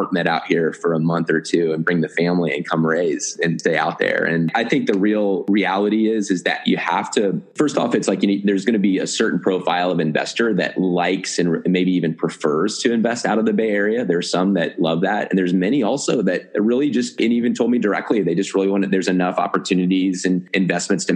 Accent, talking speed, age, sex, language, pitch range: American, 245 wpm, 30-49, male, English, 90-100 Hz